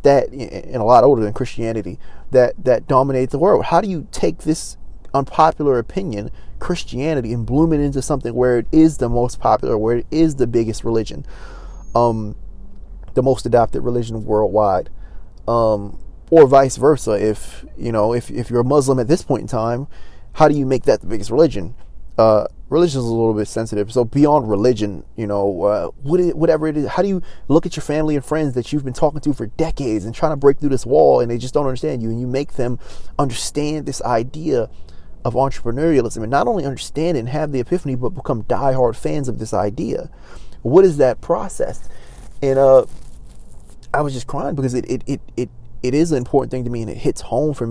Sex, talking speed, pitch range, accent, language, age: male, 205 wpm, 115-150 Hz, American, English, 20-39